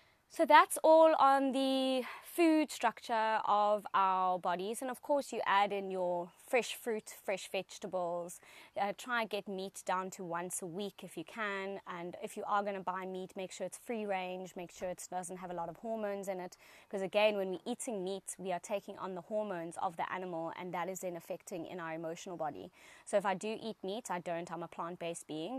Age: 20-39